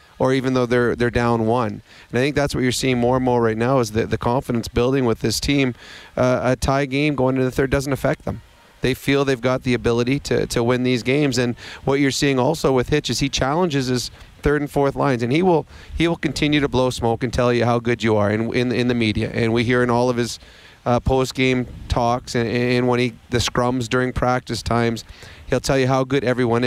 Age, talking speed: 30-49, 250 wpm